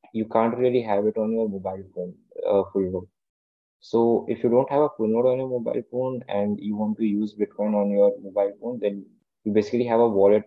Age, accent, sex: 20-39, Indian, male